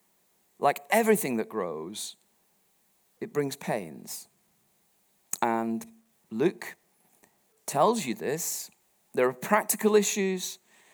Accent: British